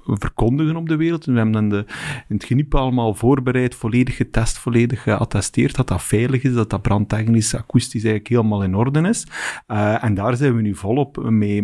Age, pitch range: 40-59, 105-130 Hz